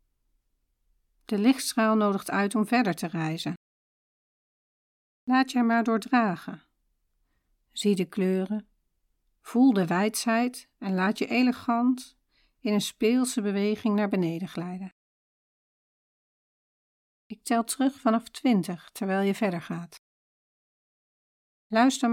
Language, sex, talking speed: Dutch, female, 105 wpm